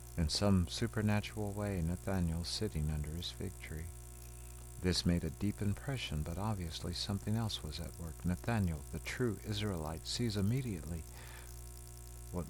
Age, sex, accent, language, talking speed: 60-79, male, American, English, 140 wpm